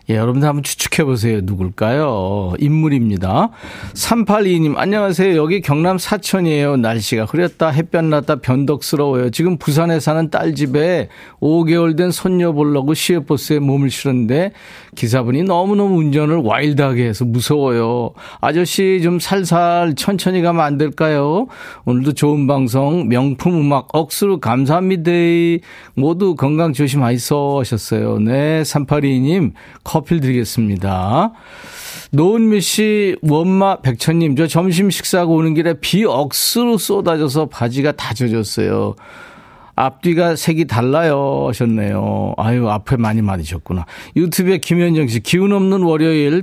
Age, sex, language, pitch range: 40-59, male, Korean, 125-175 Hz